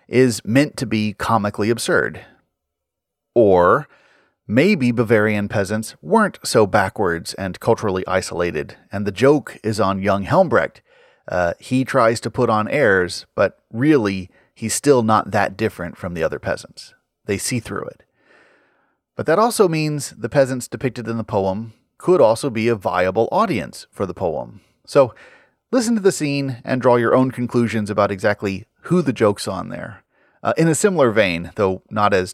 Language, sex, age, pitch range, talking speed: English, male, 30-49, 100-130 Hz, 165 wpm